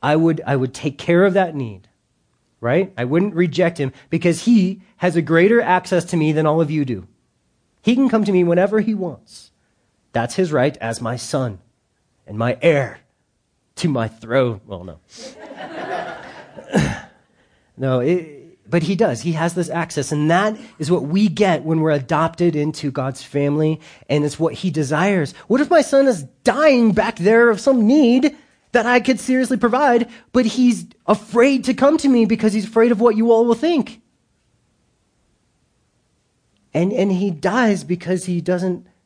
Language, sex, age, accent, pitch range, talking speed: English, male, 30-49, American, 150-220 Hz, 175 wpm